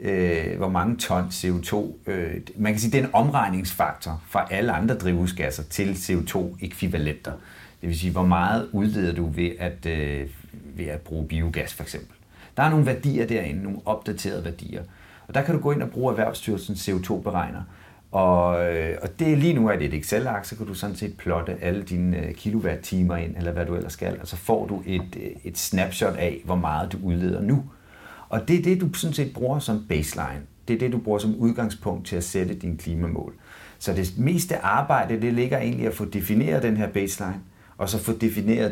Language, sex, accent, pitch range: Danish, male, native, 85-110 Hz